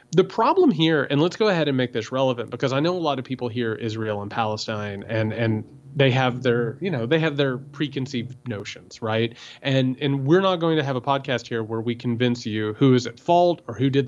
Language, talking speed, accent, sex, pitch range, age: English, 240 wpm, American, male, 120-160 Hz, 30-49